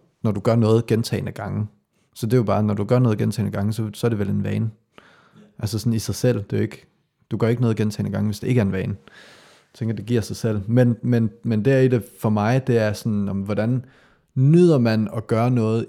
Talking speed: 260 wpm